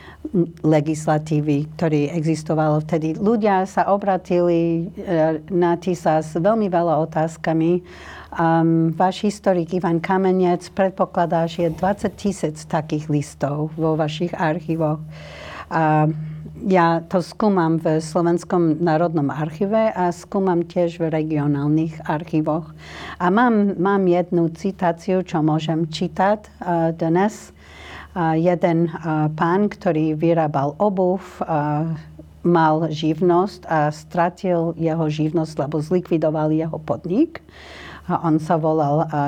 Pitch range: 155-180 Hz